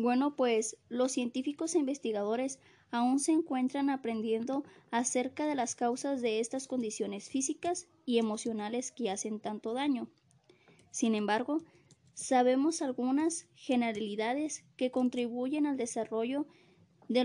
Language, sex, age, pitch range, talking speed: Spanish, female, 20-39, 225-275 Hz, 120 wpm